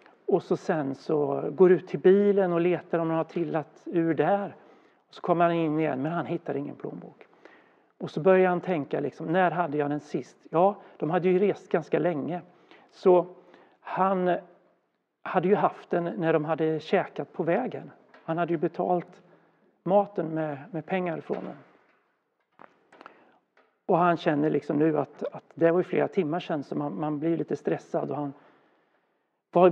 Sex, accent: male, native